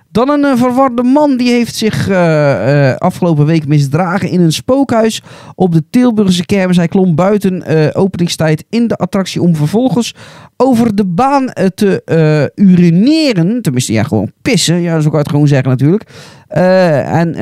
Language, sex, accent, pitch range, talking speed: Dutch, male, Dutch, 150-210 Hz, 170 wpm